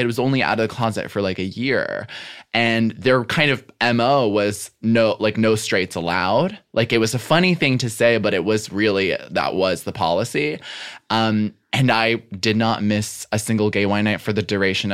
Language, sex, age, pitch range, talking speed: English, male, 20-39, 95-115 Hz, 210 wpm